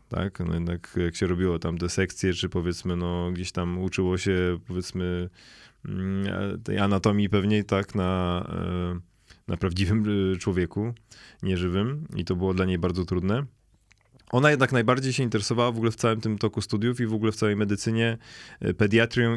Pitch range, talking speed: 95-115 Hz, 160 wpm